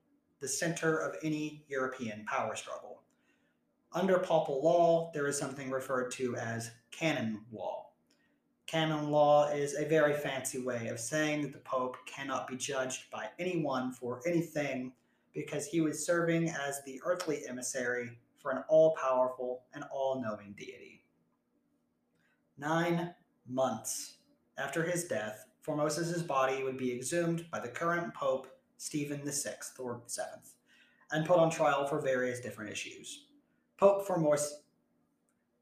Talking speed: 135 wpm